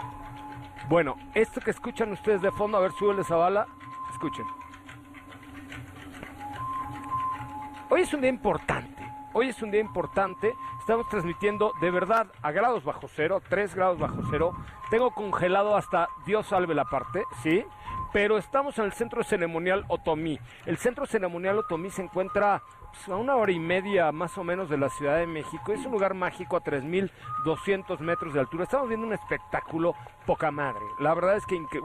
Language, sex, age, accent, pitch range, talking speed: Spanish, male, 50-69, Mexican, 165-215 Hz, 165 wpm